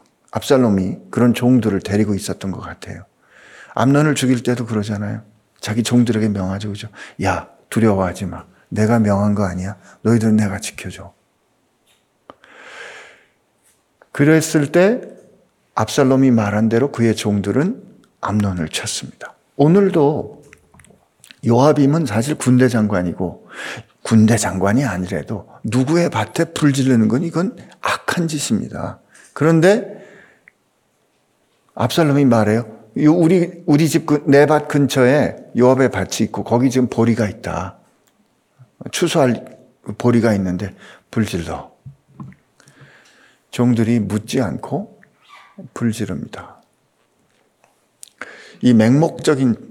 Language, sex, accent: Korean, male, native